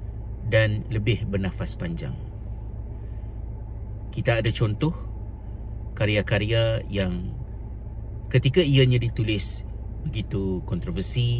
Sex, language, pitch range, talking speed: male, Malay, 95-110 Hz, 75 wpm